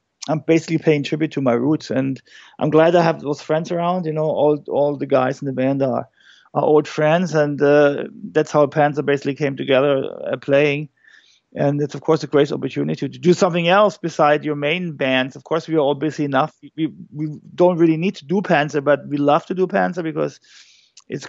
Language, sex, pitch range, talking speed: English, male, 140-160 Hz, 215 wpm